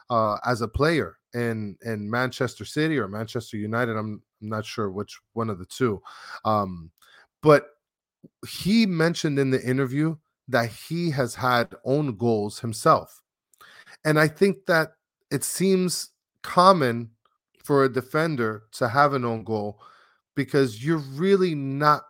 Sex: male